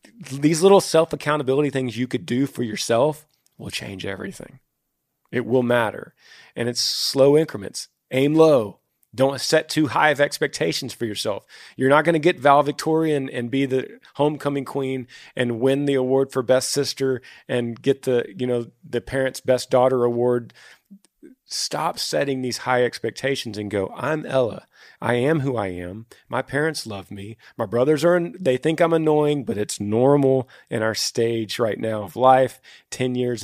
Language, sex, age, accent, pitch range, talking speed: English, male, 40-59, American, 110-140 Hz, 170 wpm